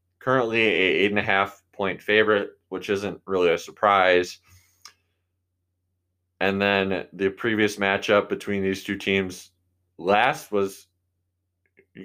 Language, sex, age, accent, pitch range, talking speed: English, male, 20-39, American, 90-105 Hz, 125 wpm